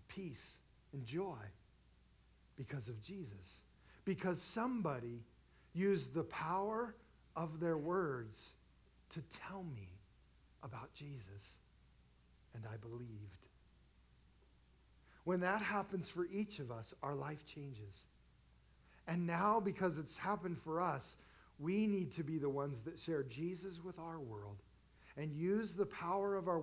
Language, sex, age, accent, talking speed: English, male, 50-69, American, 130 wpm